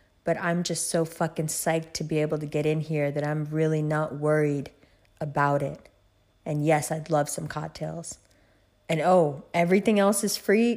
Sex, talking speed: female, 180 wpm